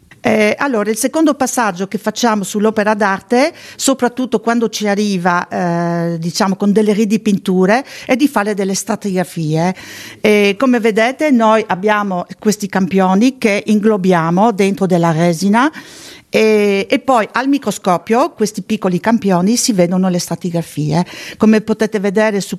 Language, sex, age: Italian, female, 50-69